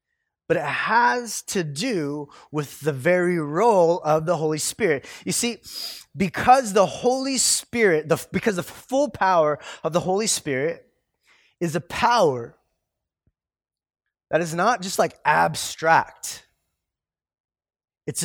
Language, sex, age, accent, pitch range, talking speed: English, male, 20-39, American, 165-225 Hz, 120 wpm